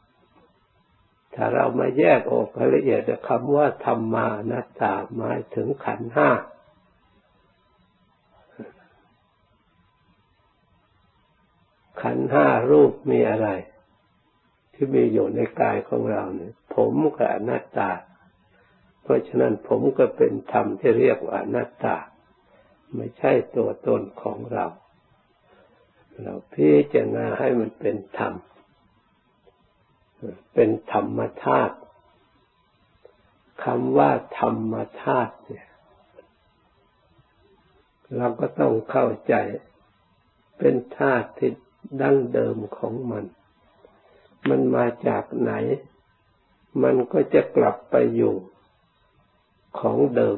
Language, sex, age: Thai, male, 60-79